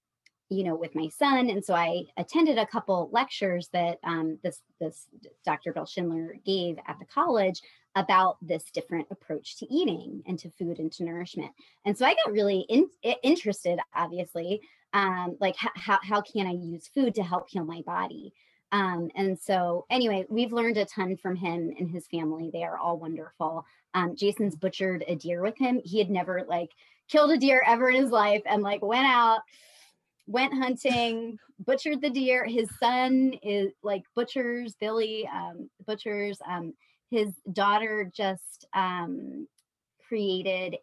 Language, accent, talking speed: English, American, 165 wpm